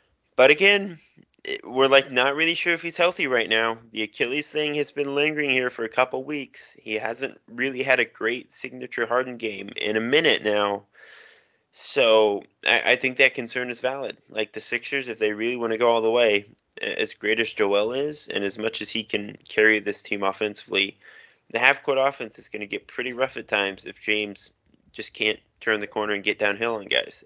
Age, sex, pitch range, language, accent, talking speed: 20-39, male, 105-125 Hz, English, American, 205 wpm